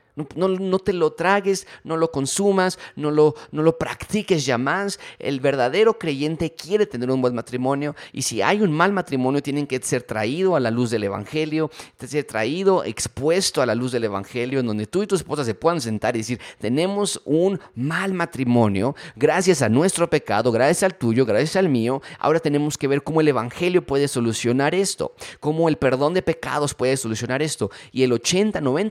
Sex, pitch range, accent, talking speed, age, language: male, 115-155 Hz, Mexican, 190 wpm, 30-49, Spanish